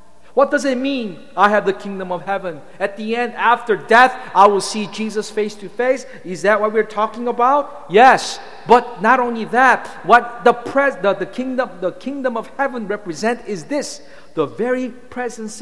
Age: 50-69